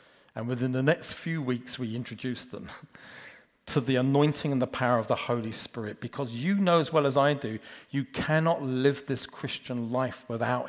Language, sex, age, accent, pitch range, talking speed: English, male, 40-59, British, 125-165 Hz, 190 wpm